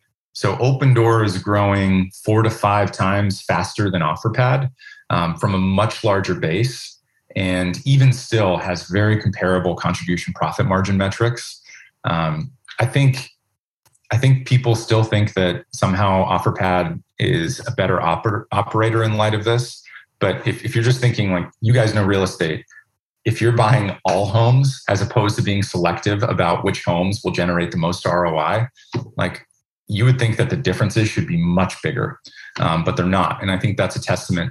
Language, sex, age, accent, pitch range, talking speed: Danish, male, 30-49, American, 95-120 Hz, 170 wpm